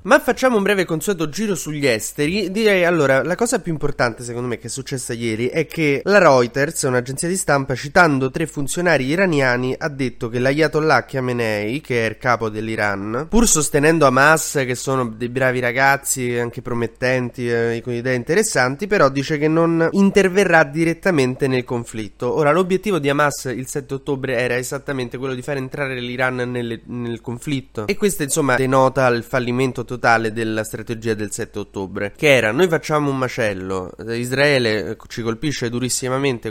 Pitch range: 115-145 Hz